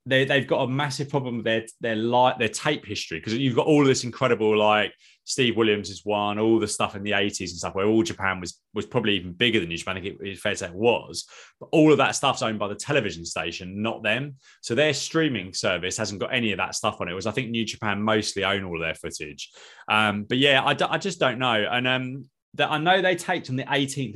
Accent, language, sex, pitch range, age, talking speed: British, English, male, 100-130 Hz, 20-39, 255 wpm